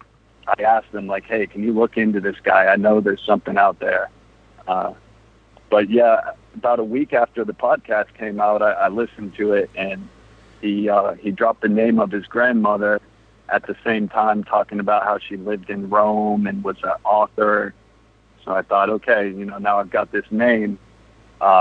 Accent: American